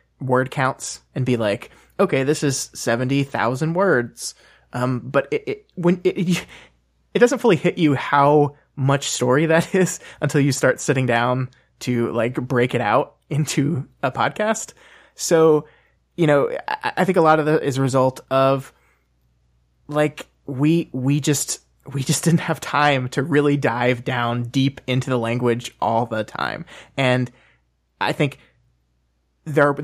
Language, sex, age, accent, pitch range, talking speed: English, male, 20-39, American, 120-150 Hz, 155 wpm